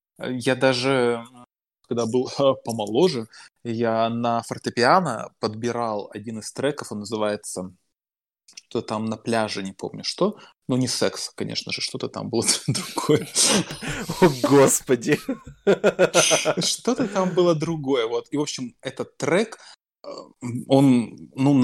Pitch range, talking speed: 120-145 Hz, 120 wpm